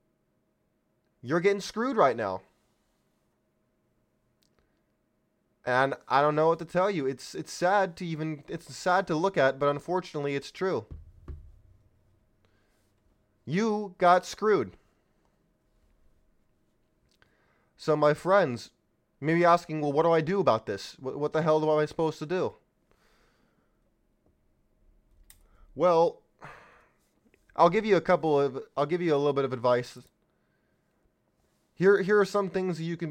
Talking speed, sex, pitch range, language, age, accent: 135 wpm, male, 135-190 Hz, English, 20-39, American